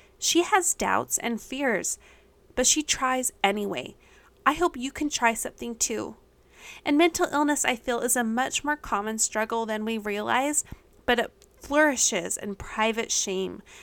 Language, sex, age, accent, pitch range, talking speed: English, female, 20-39, American, 215-280 Hz, 155 wpm